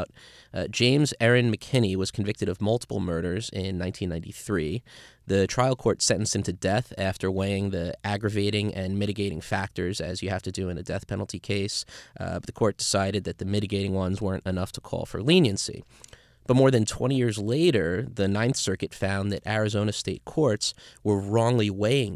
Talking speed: 180 wpm